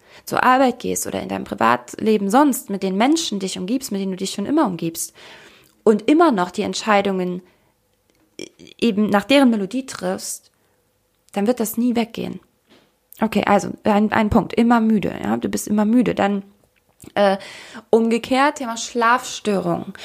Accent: German